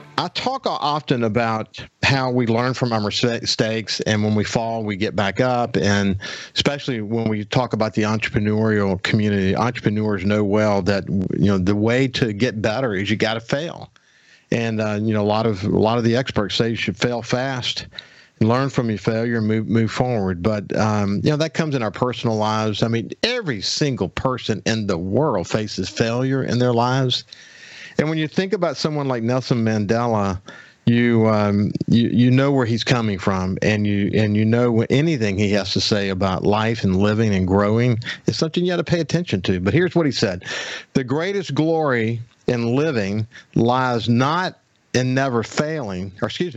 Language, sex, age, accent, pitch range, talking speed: English, male, 50-69, American, 105-130 Hz, 195 wpm